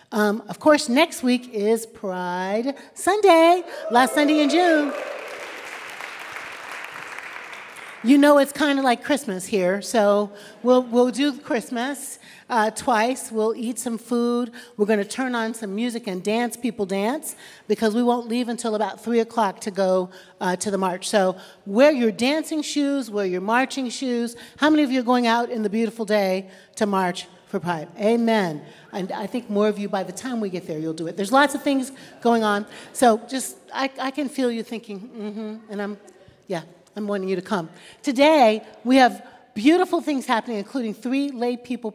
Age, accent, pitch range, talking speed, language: 40-59, American, 195-250 Hz, 185 wpm, English